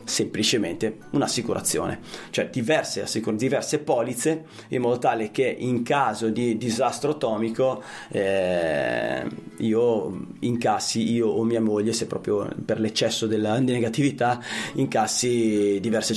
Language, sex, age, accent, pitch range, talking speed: Italian, male, 30-49, native, 110-130 Hz, 110 wpm